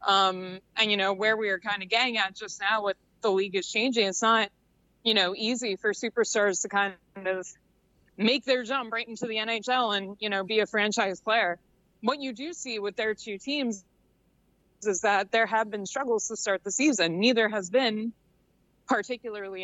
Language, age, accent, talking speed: English, 20-39, American, 195 wpm